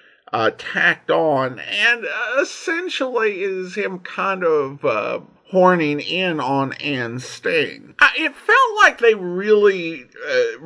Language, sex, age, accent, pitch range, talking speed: English, male, 50-69, American, 145-235 Hz, 130 wpm